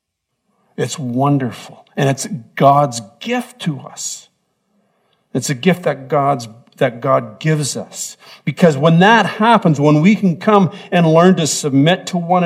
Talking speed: 150 wpm